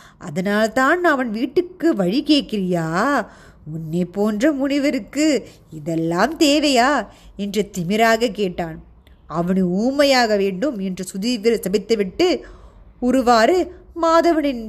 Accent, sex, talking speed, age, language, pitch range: native, female, 80 wpm, 20-39, Tamil, 185-265 Hz